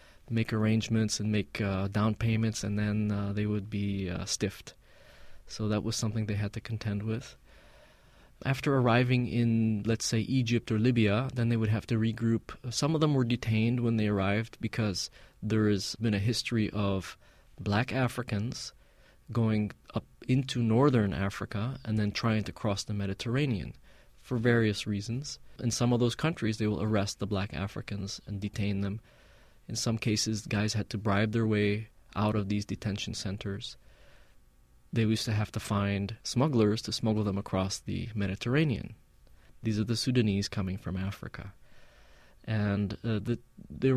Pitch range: 100-115 Hz